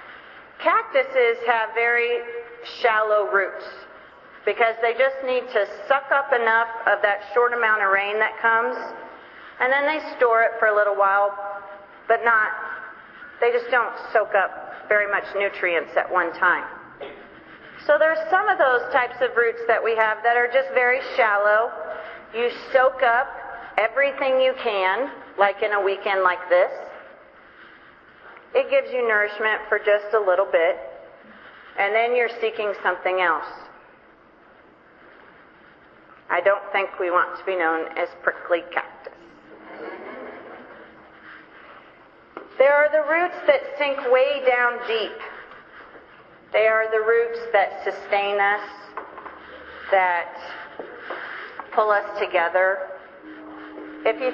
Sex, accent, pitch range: female, American, 200-260 Hz